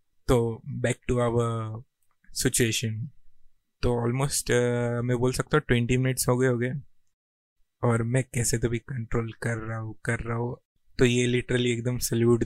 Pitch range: 115-125 Hz